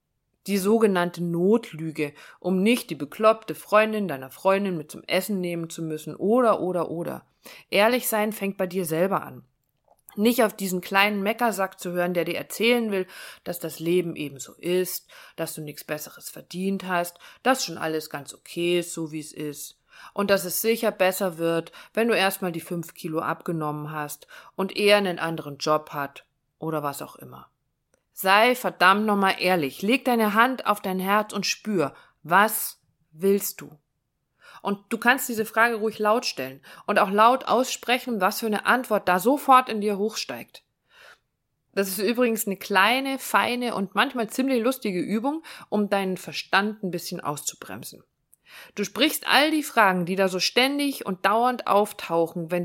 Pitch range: 165-215 Hz